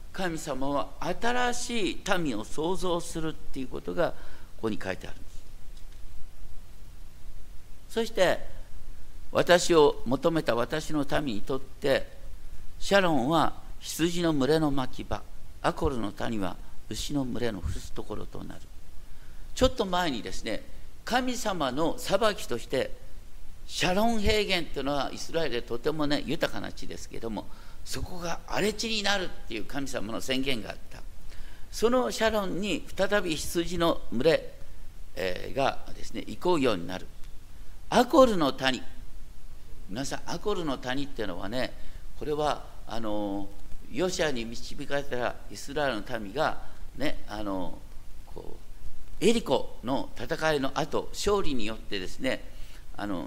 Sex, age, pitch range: male, 50-69, 110-185 Hz